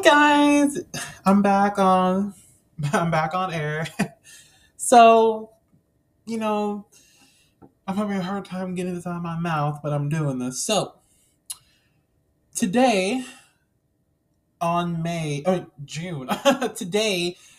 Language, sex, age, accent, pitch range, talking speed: English, male, 20-39, American, 140-200 Hz, 115 wpm